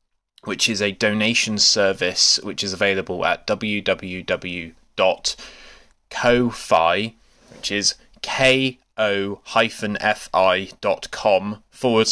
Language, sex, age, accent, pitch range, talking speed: English, male, 20-39, British, 95-115 Hz, 75 wpm